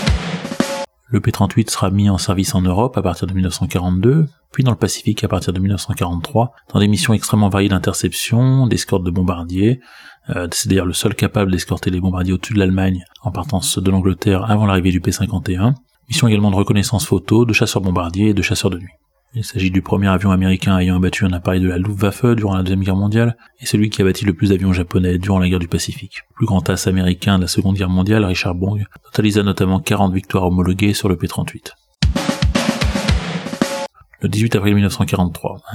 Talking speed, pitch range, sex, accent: 200 wpm, 90-110 Hz, male, French